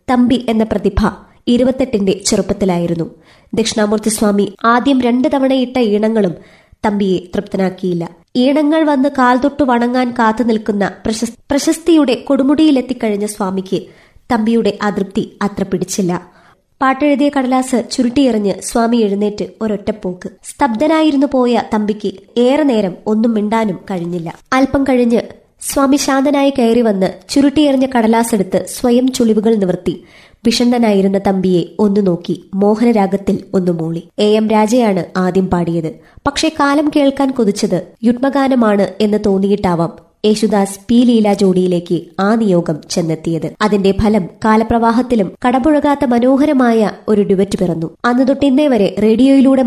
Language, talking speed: Malayalam, 105 wpm